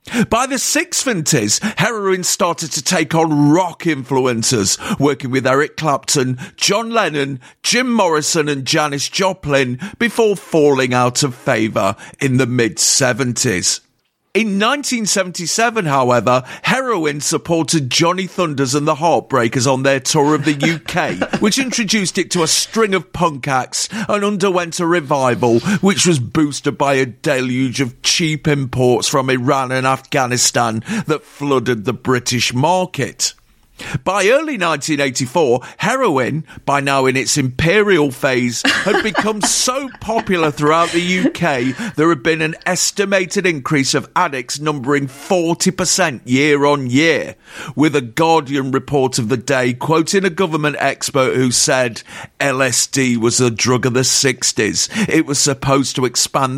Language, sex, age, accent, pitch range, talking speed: English, male, 50-69, British, 130-175 Hz, 140 wpm